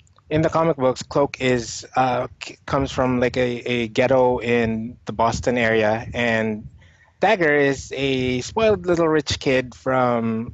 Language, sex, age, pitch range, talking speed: English, male, 20-39, 115-140 Hz, 150 wpm